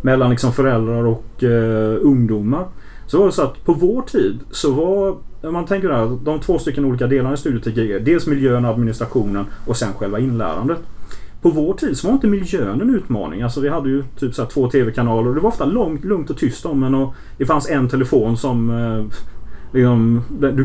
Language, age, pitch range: Swedish, 30-49, 120-155 Hz